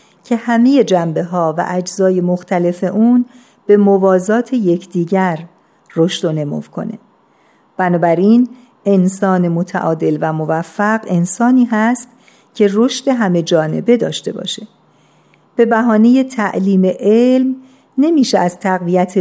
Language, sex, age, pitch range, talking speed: Persian, female, 50-69, 175-220 Hz, 110 wpm